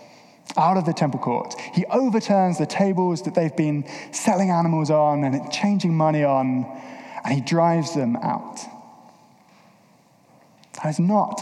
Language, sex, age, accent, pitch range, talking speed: English, male, 20-39, British, 150-195 Hz, 140 wpm